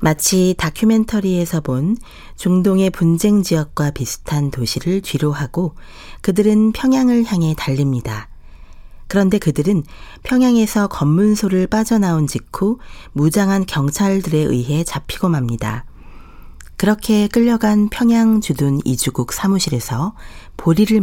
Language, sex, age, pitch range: Korean, female, 40-59, 130-205 Hz